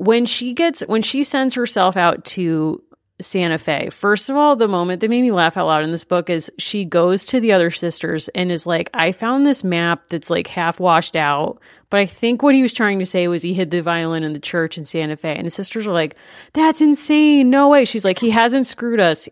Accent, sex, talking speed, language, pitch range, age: American, female, 245 wpm, English, 170-230 Hz, 30-49